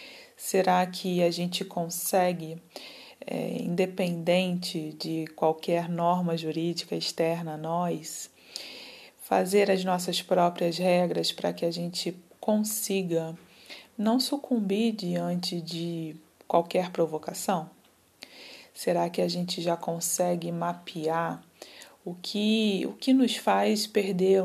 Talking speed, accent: 105 wpm, Brazilian